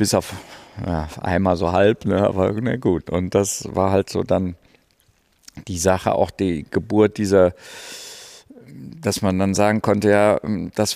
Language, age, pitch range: German, 50-69, 100-115 Hz